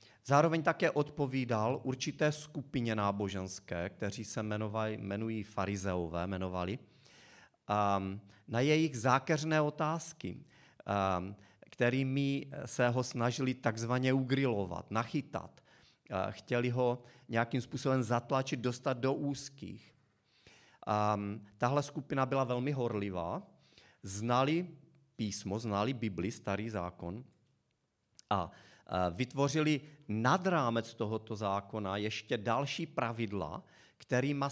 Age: 40-59